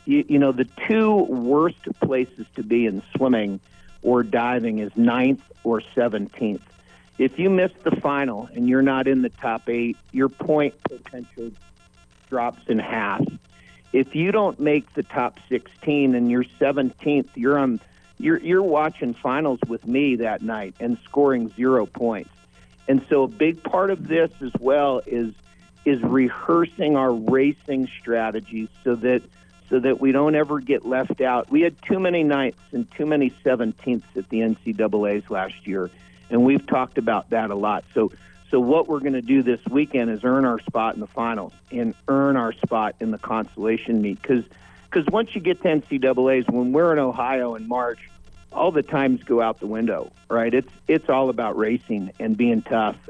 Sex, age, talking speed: male, 50-69, 180 wpm